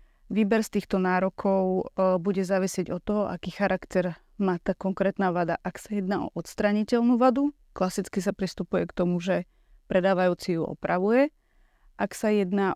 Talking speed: 150 wpm